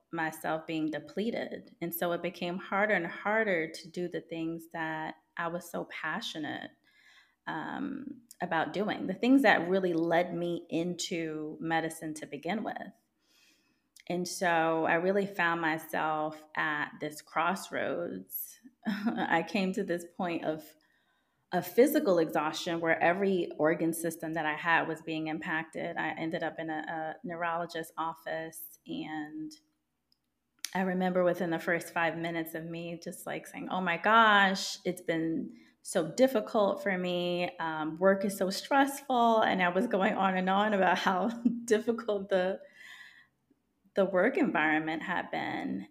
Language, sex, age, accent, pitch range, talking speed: English, female, 20-39, American, 165-205 Hz, 145 wpm